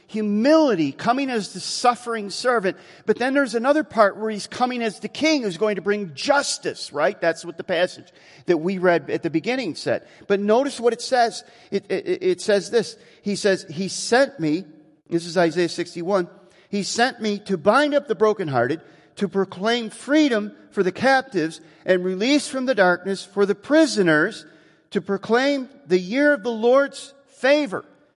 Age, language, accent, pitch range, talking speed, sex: 50-69, English, American, 180-245 Hz, 175 wpm, male